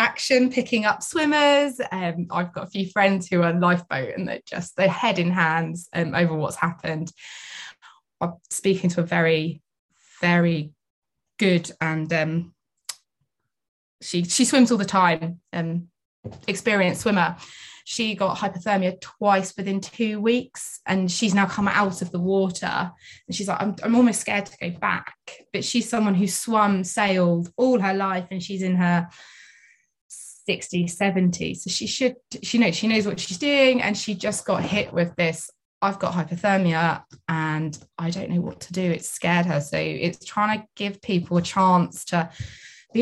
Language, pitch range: English, 175-215 Hz